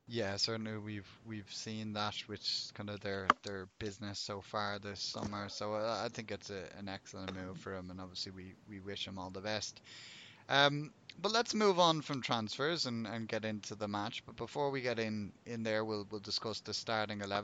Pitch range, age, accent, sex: 105-135 Hz, 20-39, Irish, male